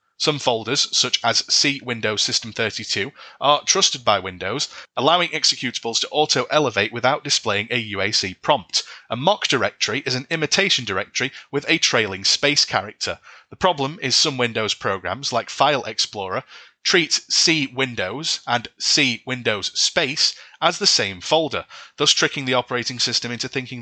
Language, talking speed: English, 135 wpm